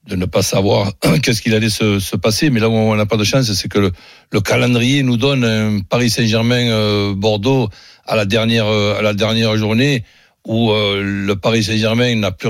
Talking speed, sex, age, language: 200 wpm, male, 60-79, French